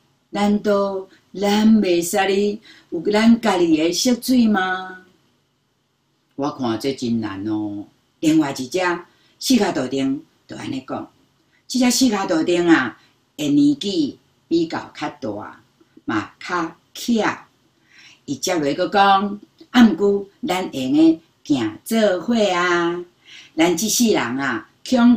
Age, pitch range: 50-69, 160-255 Hz